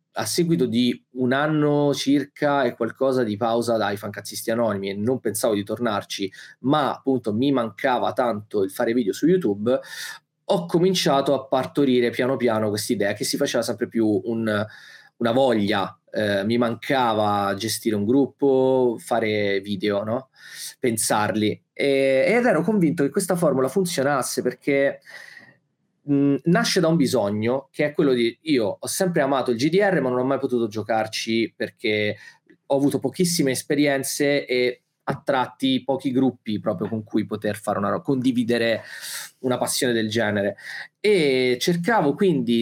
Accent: native